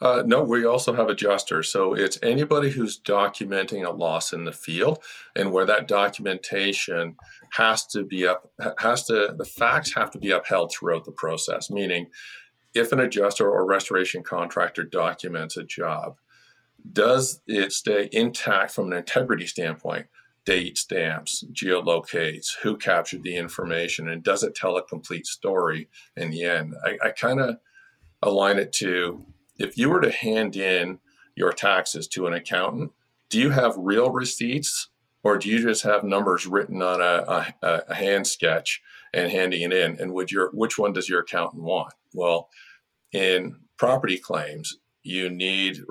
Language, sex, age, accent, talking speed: English, male, 50-69, American, 165 wpm